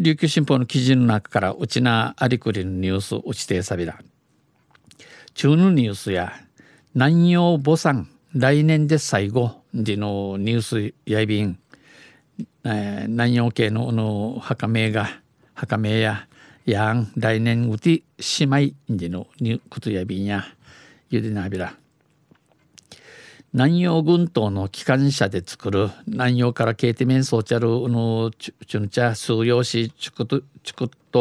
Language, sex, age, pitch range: Japanese, male, 60-79, 110-140 Hz